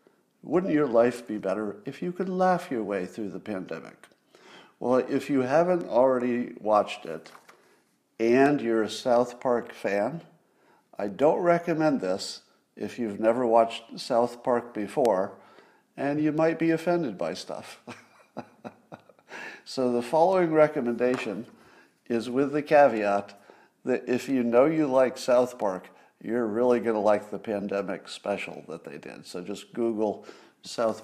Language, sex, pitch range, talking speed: English, male, 105-135 Hz, 145 wpm